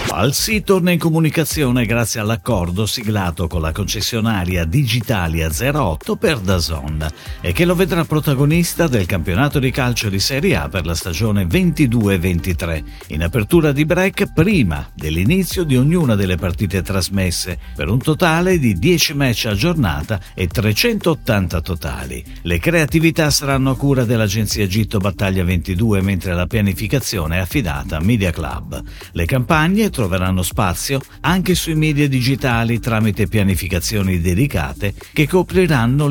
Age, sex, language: 50-69, male, Italian